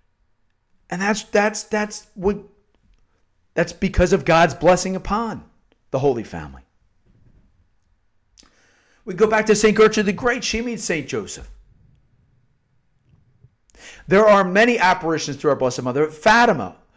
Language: English